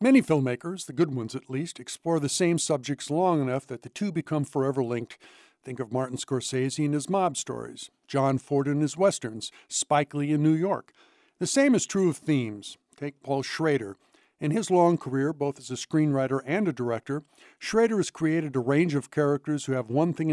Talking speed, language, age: 200 wpm, English, 60-79